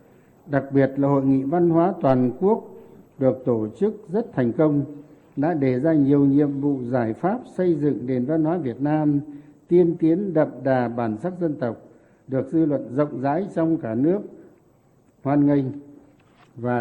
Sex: male